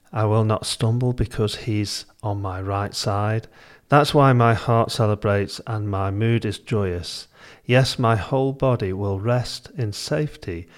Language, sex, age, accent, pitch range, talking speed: English, male, 40-59, British, 95-120 Hz, 155 wpm